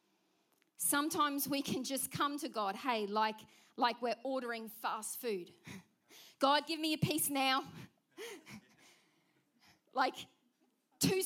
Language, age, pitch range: English, 40-59, 235-305 Hz